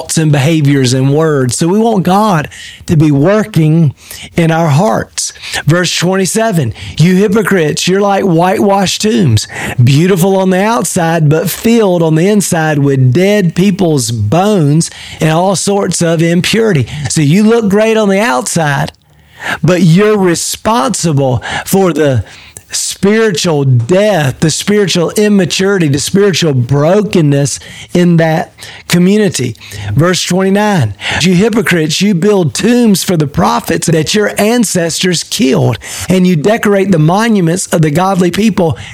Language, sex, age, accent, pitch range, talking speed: English, male, 40-59, American, 150-200 Hz, 135 wpm